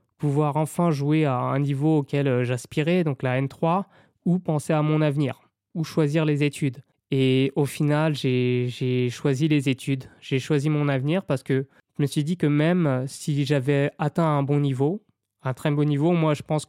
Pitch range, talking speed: 130-155 Hz, 190 wpm